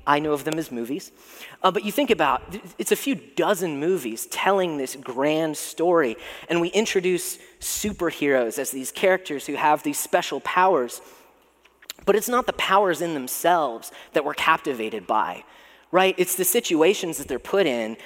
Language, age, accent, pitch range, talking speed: English, 30-49, American, 140-195 Hz, 170 wpm